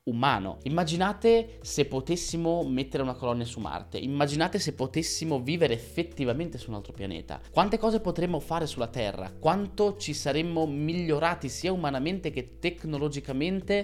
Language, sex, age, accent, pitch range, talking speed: Italian, male, 20-39, native, 115-160 Hz, 140 wpm